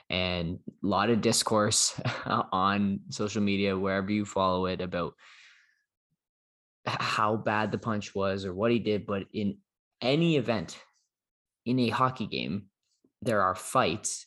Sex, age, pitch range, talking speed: male, 20-39, 100-115 Hz, 140 wpm